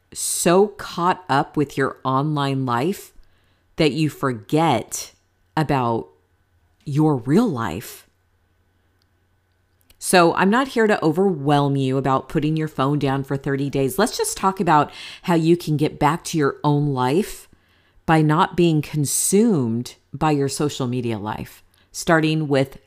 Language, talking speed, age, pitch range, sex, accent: English, 140 wpm, 40-59, 115-180 Hz, female, American